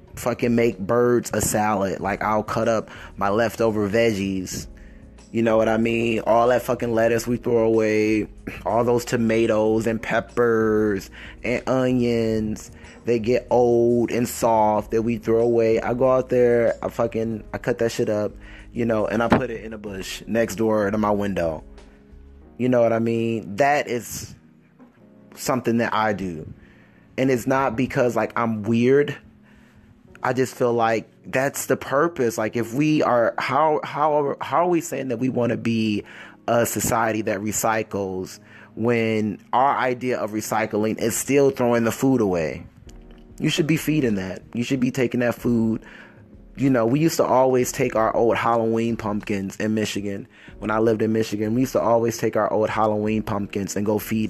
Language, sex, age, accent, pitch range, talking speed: English, male, 20-39, American, 105-120 Hz, 180 wpm